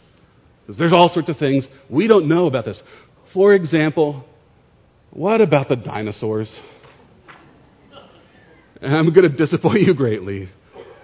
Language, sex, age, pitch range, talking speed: English, male, 40-59, 110-145 Hz, 120 wpm